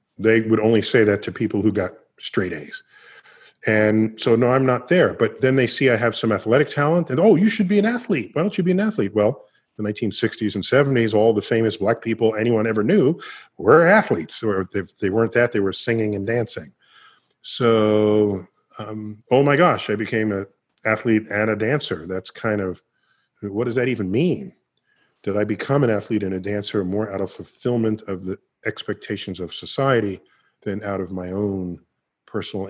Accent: American